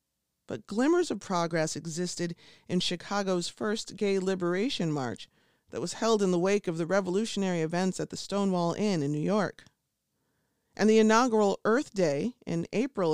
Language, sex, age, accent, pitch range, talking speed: English, female, 40-59, American, 160-220 Hz, 160 wpm